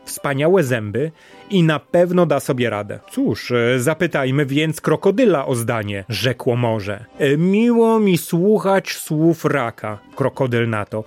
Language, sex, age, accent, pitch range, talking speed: Polish, male, 30-49, native, 130-195 Hz, 130 wpm